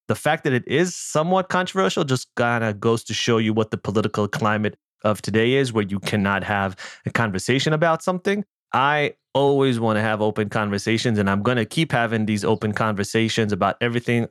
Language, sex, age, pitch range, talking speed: English, male, 20-39, 105-120 Hz, 195 wpm